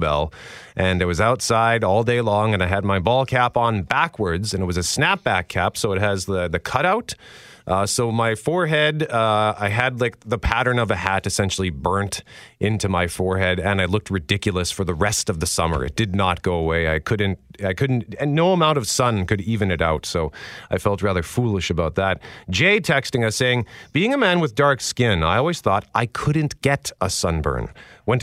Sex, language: male, English